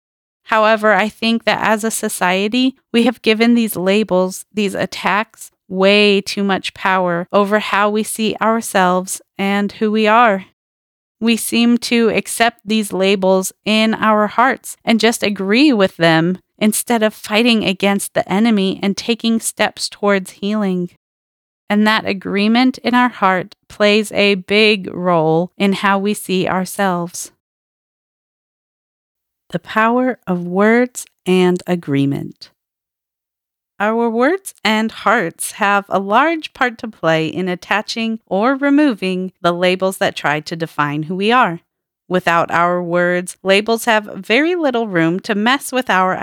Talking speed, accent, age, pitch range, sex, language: 140 wpm, American, 30-49, 180-220 Hz, female, English